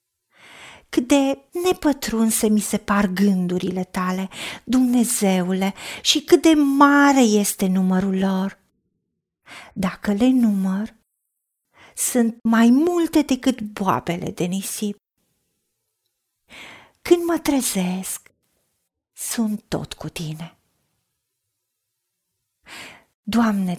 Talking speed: 85 wpm